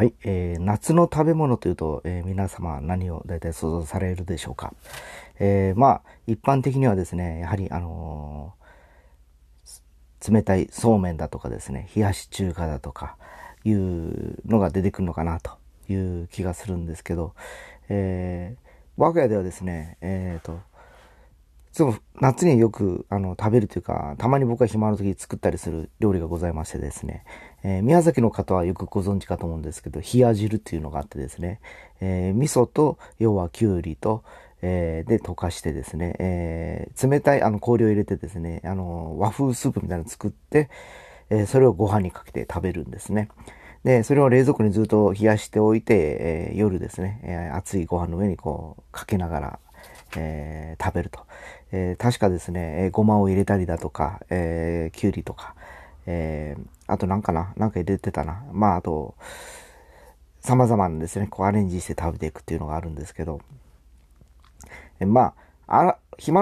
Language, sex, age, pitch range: Japanese, male, 40-59, 80-105 Hz